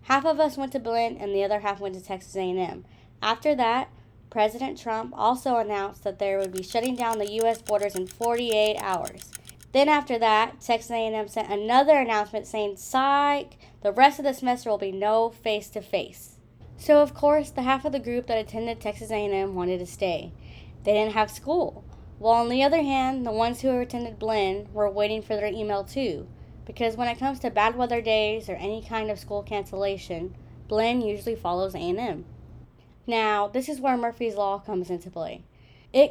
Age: 20-39